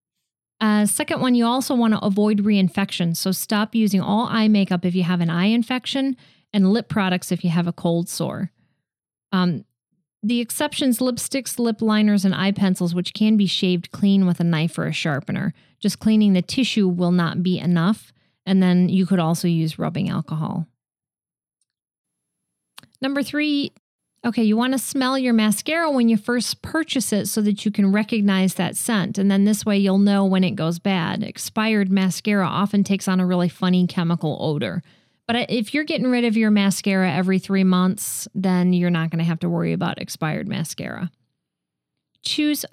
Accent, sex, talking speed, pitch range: American, female, 185 wpm, 180-220 Hz